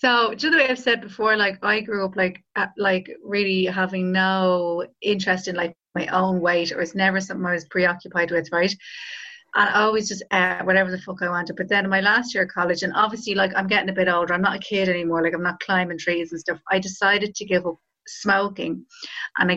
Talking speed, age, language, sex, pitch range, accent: 240 wpm, 30-49, English, female, 175-215 Hz, Irish